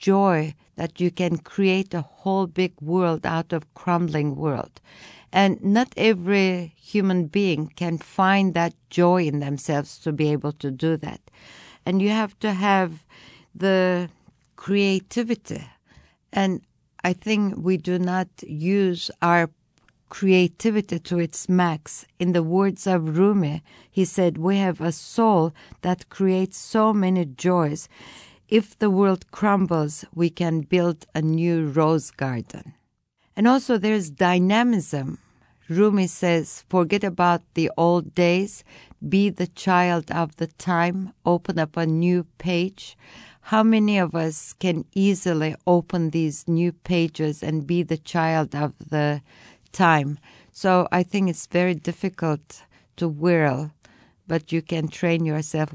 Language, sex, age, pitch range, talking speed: English, female, 60-79, 155-190 Hz, 140 wpm